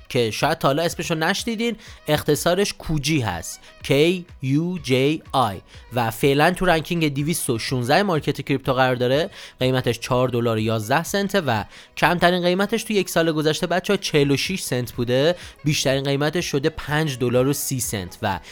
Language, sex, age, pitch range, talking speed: Persian, male, 30-49, 130-180 Hz, 145 wpm